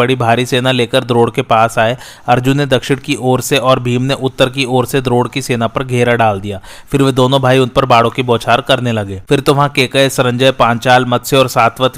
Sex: male